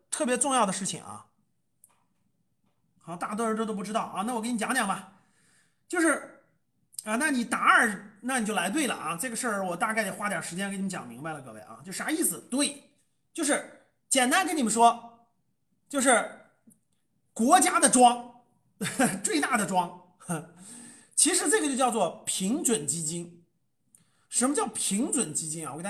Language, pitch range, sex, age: Chinese, 195-270 Hz, male, 30-49